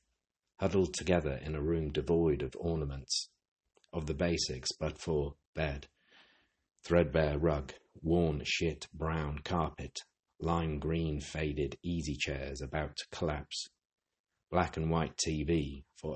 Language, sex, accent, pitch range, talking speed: English, male, British, 70-85 Hz, 125 wpm